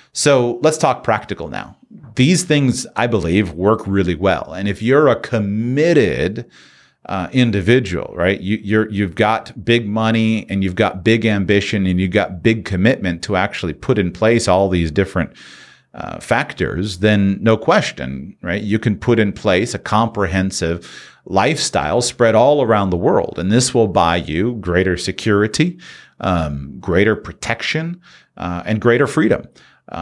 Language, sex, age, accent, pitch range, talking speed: English, male, 40-59, American, 95-120 Hz, 150 wpm